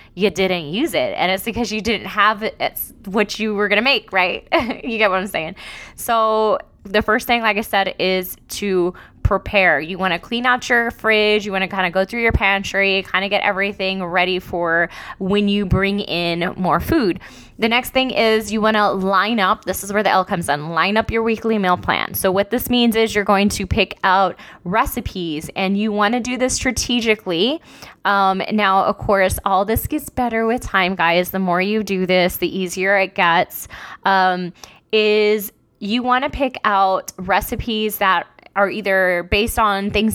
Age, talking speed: 20-39, 200 wpm